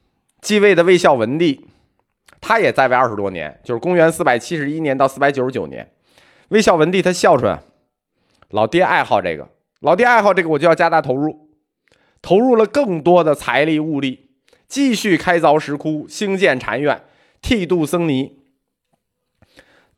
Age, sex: 20-39, male